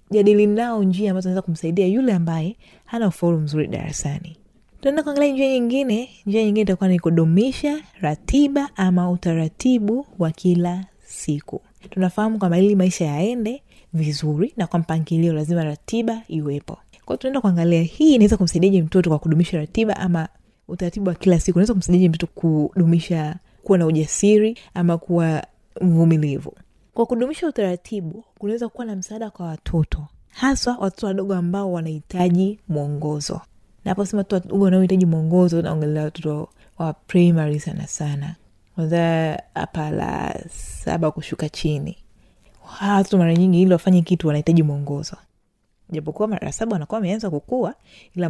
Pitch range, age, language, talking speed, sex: 165-210 Hz, 20-39, Swahili, 135 wpm, female